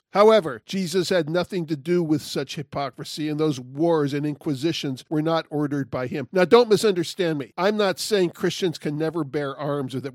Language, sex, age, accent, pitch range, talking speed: English, male, 50-69, American, 150-190 Hz, 195 wpm